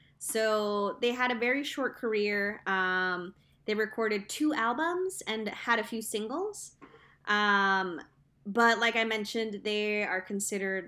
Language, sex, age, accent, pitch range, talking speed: English, female, 20-39, American, 200-235 Hz, 140 wpm